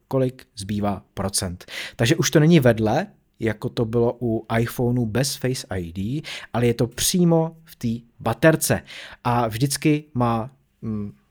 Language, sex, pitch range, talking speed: Czech, male, 105-155 Hz, 145 wpm